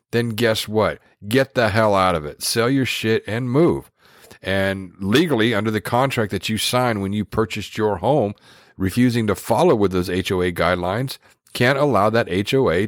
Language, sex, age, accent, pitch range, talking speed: English, male, 50-69, American, 95-120 Hz, 175 wpm